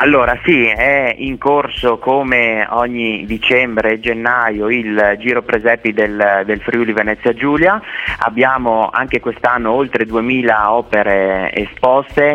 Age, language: 30-49, Italian